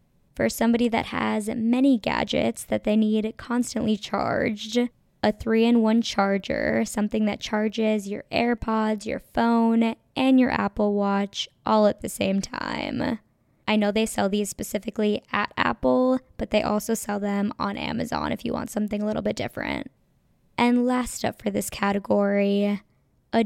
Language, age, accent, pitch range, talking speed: English, 10-29, American, 205-230 Hz, 155 wpm